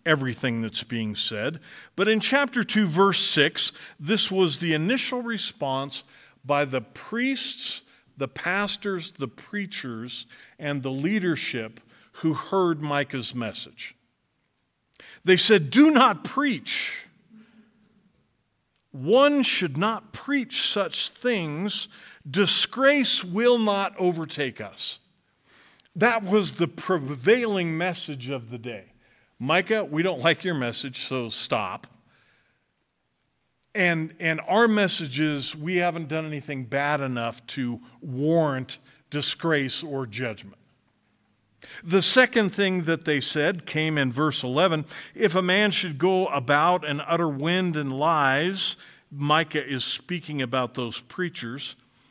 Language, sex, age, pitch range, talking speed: English, male, 50-69, 135-200 Hz, 120 wpm